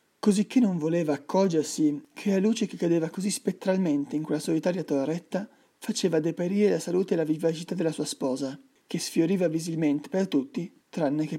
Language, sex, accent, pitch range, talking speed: Italian, male, native, 145-190 Hz, 170 wpm